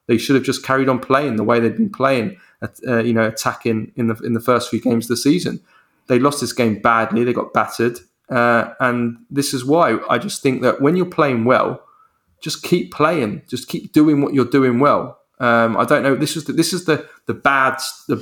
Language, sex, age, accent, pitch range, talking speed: English, male, 20-39, British, 110-135 Hz, 230 wpm